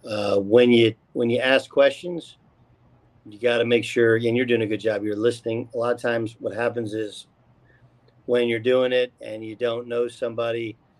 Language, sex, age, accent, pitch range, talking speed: English, male, 40-59, American, 115-140 Hz, 195 wpm